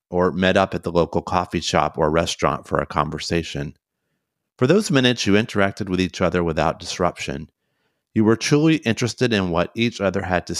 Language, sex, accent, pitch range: English, male, American, 85-105 Hz